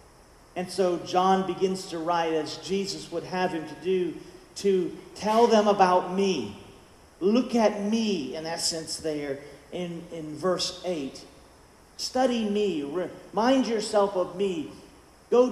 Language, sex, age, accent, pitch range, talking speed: English, male, 50-69, American, 165-205 Hz, 140 wpm